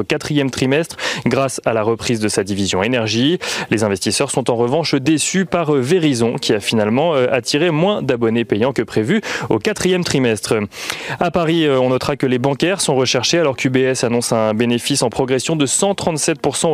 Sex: male